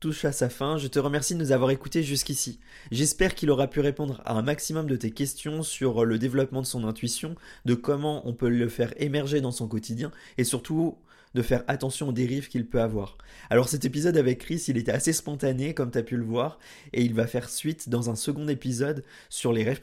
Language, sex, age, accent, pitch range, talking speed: French, male, 20-39, French, 120-150 Hz, 230 wpm